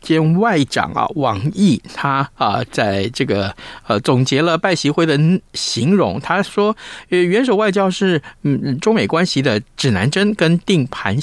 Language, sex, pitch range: Chinese, male, 130-185 Hz